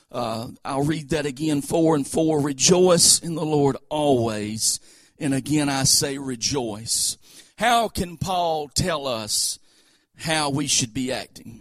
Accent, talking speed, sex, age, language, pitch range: American, 145 wpm, male, 40-59, English, 135-170 Hz